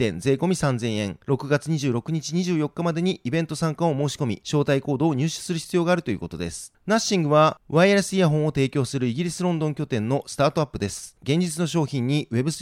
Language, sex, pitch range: Japanese, male, 135-170 Hz